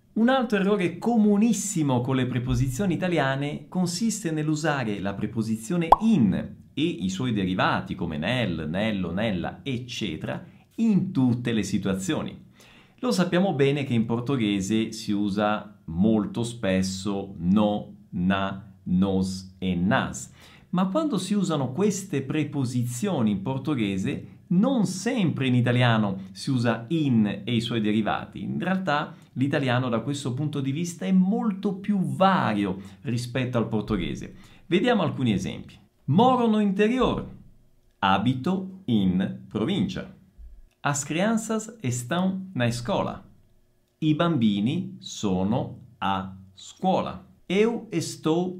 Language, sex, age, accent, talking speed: Italian, male, 50-69, native, 120 wpm